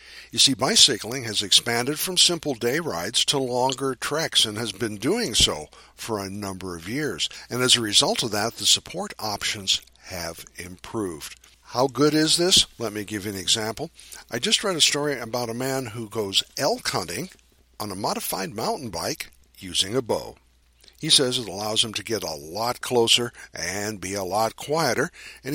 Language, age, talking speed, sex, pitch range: English, 50-69, 185 wpm, male, 100-135 Hz